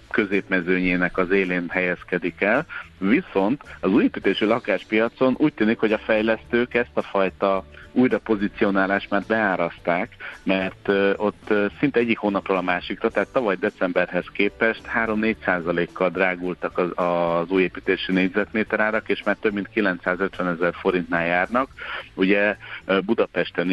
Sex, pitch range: male, 90-105 Hz